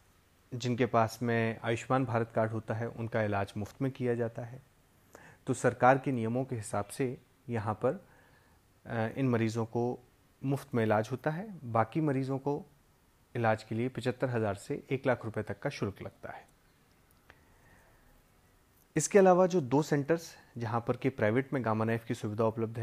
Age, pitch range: 30-49, 110-130 Hz